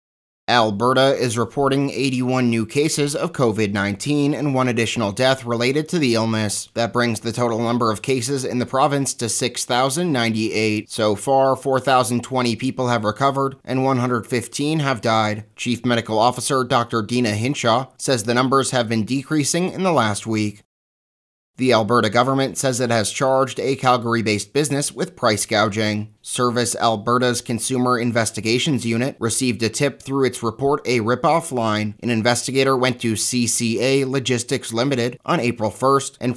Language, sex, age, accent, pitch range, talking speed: English, male, 30-49, American, 115-135 Hz, 150 wpm